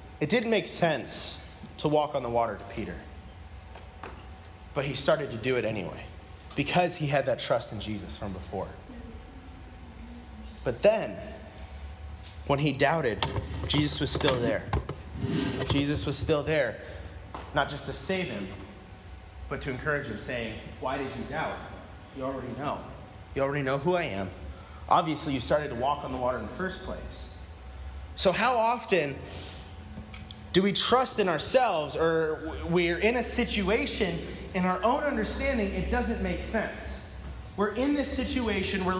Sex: male